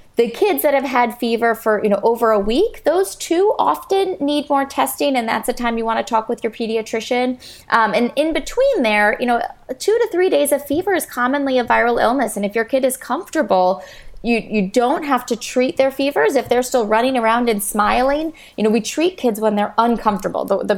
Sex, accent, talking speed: female, American, 225 wpm